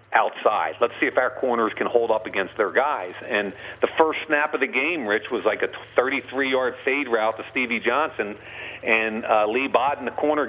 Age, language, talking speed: 50-69, English, 200 wpm